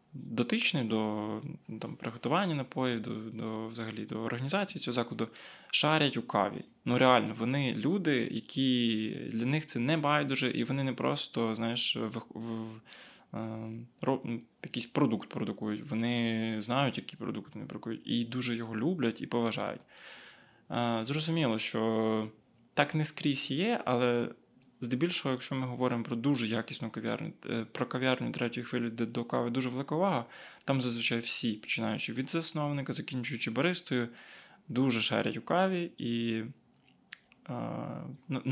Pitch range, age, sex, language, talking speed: 115-145 Hz, 20-39, male, Ukrainian, 140 wpm